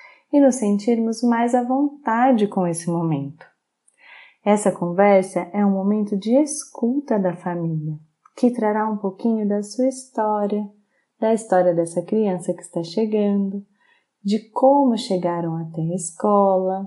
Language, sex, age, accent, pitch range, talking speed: Portuguese, female, 30-49, Brazilian, 190-230 Hz, 135 wpm